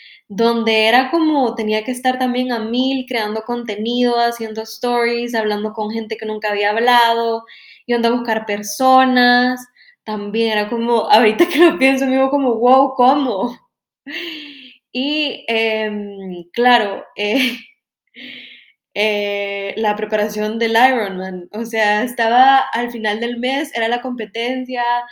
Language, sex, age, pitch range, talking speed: Spanish, female, 10-29, 220-260 Hz, 130 wpm